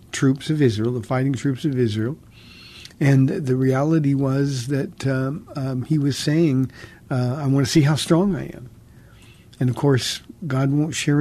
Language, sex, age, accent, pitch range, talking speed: English, male, 50-69, American, 120-145 Hz, 175 wpm